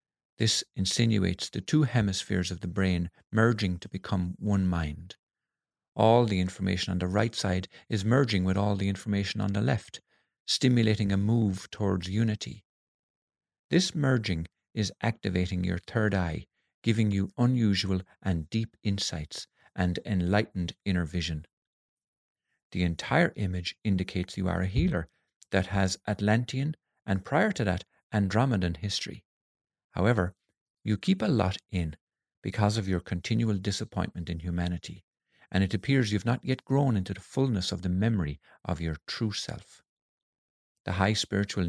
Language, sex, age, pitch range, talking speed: English, male, 50-69, 90-110 Hz, 145 wpm